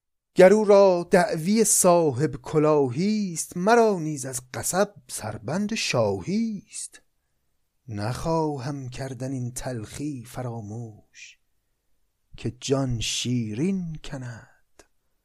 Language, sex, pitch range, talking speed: Persian, male, 115-160 Hz, 90 wpm